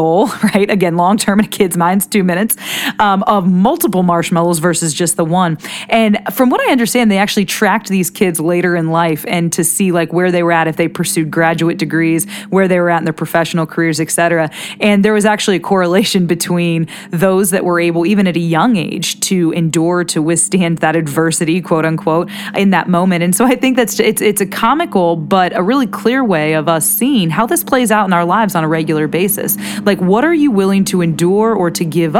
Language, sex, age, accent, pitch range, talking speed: English, female, 20-39, American, 170-210 Hz, 220 wpm